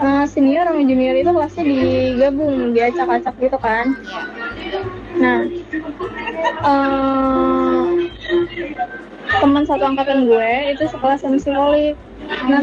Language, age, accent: Indonesian, 20-39, native